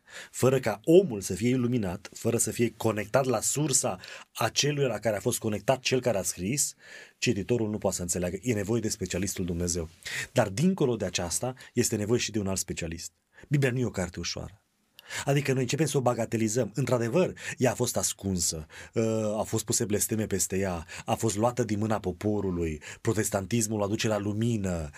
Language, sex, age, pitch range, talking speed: Romanian, male, 30-49, 105-130 Hz, 185 wpm